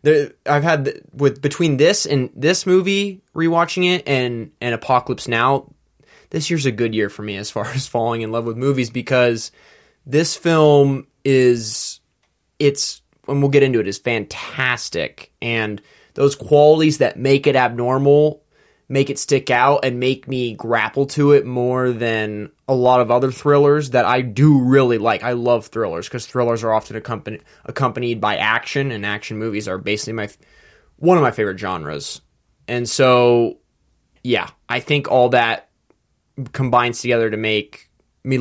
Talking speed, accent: 160 wpm, American